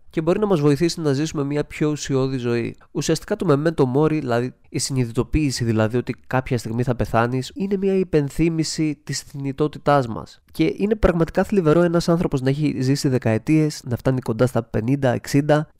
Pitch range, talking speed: 125-155 Hz, 175 wpm